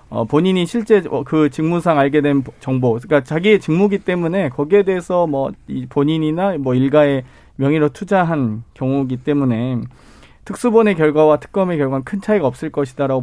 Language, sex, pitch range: Korean, male, 140-195 Hz